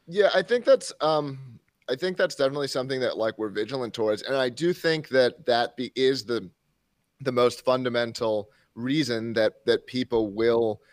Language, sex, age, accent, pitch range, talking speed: English, male, 30-49, American, 105-130 Hz, 175 wpm